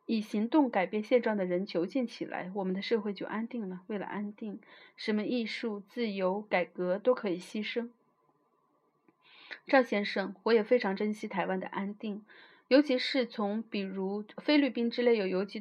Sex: female